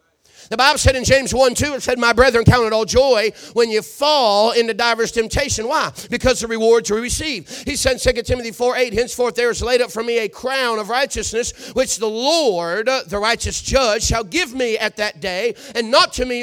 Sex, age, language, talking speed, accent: male, 40-59, English, 225 wpm, American